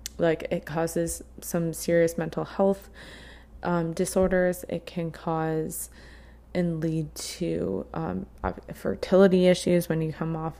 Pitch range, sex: 160-175 Hz, female